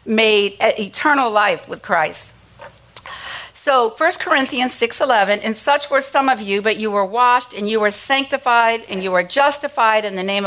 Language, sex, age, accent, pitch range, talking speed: English, female, 50-69, American, 185-230 Hz, 180 wpm